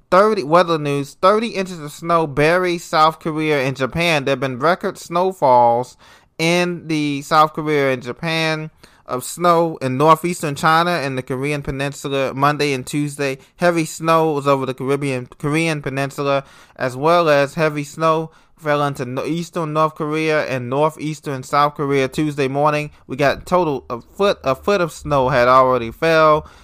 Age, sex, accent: 20-39, male, American